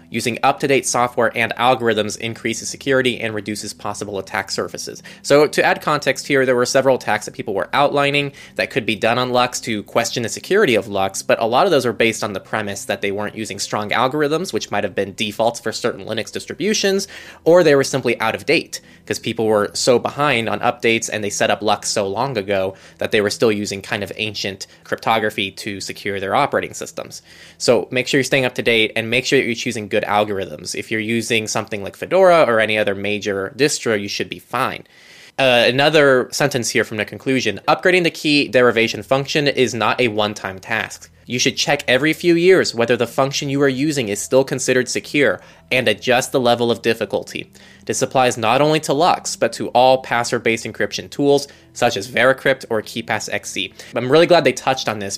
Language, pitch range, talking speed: English, 105-135 Hz, 210 wpm